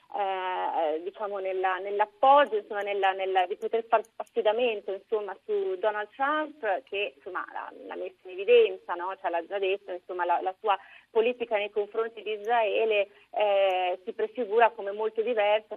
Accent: native